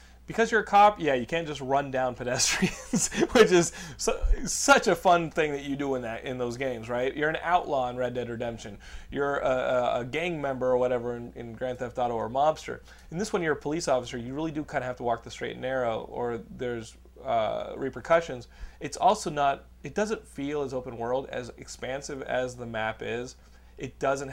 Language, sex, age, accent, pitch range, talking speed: English, male, 30-49, American, 110-135 Hz, 220 wpm